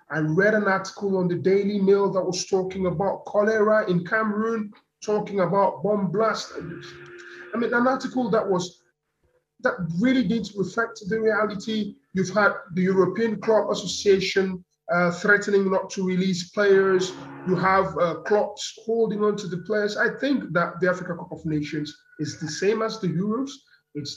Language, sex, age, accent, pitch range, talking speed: English, male, 20-39, Nigerian, 175-220 Hz, 165 wpm